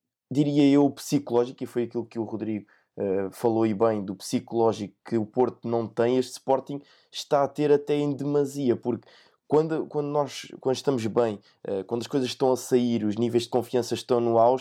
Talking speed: 205 wpm